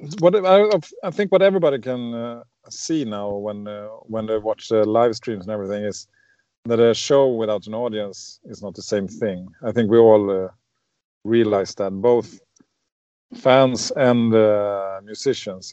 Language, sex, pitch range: English, male, 110-130 Hz